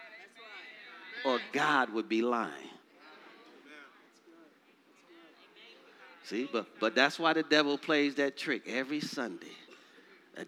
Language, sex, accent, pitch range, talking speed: English, male, American, 150-250 Hz, 105 wpm